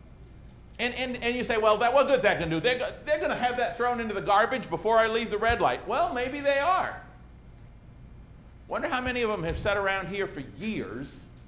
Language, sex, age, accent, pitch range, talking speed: English, male, 50-69, American, 170-245 Hz, 220 wpm